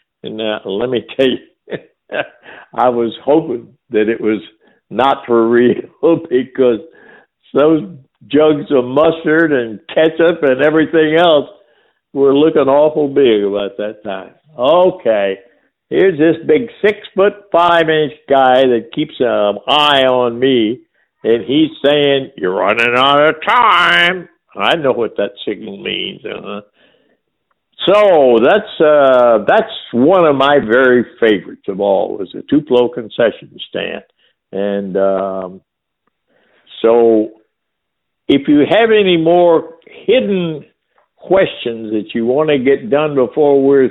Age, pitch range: 60-79, 115-170 Hz